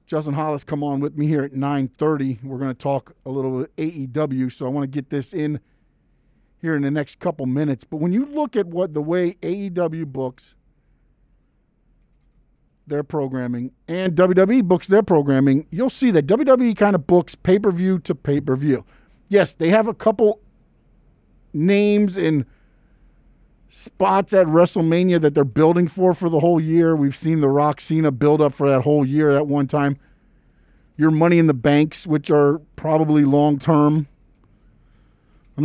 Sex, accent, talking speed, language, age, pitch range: male, American, 165 wpm, English, 50-69, 140-175 Hz